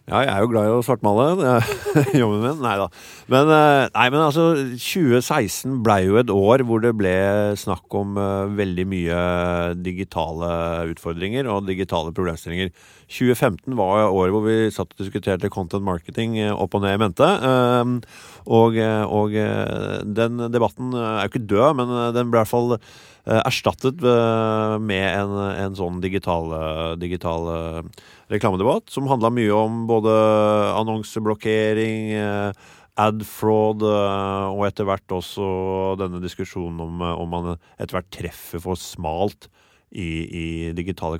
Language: English